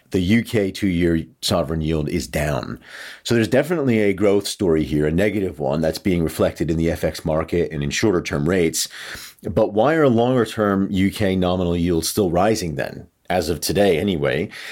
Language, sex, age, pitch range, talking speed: English, male, 40-59, 85-105 Hz, 170 wpm